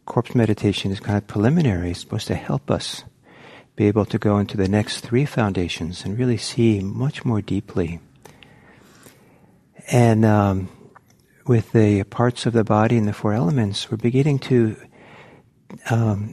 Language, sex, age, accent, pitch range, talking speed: English, male, 60-79, American, 100-125 Hz, 155 wpm